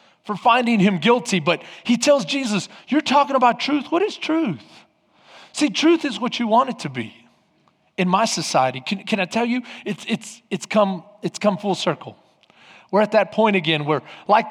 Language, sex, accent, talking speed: English, male, American, 195 wpm